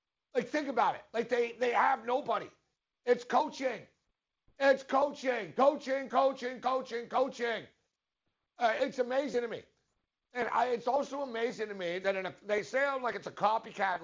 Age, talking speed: 60-79, 150 wpm